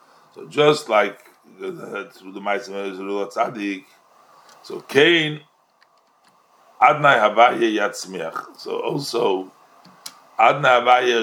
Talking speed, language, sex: 85 wpm, English, male